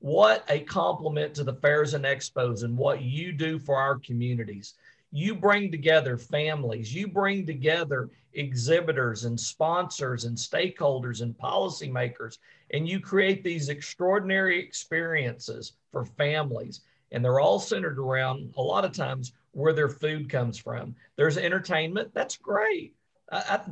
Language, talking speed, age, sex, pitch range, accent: English, 145 wpm, 50-69, male, 140-185 Hz, American